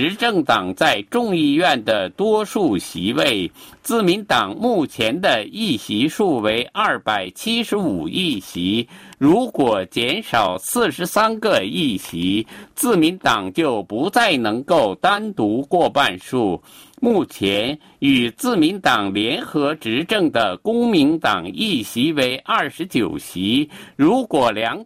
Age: 50-69